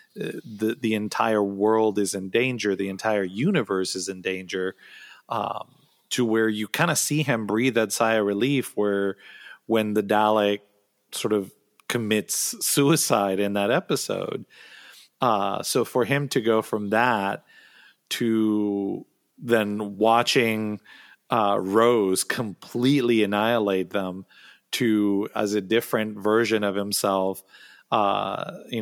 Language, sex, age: English, male, 40-59